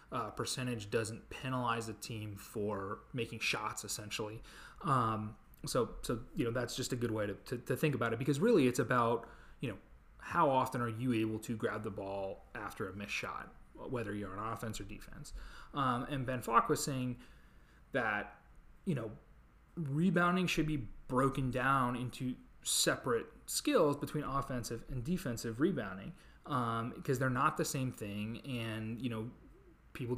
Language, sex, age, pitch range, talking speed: English, male, 30-49, 110-135 Hz, 165 wpm